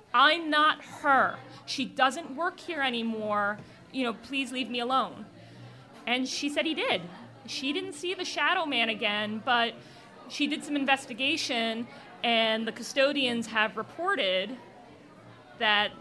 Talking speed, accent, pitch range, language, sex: 140 wpm, American, 220-280 Hz, English, female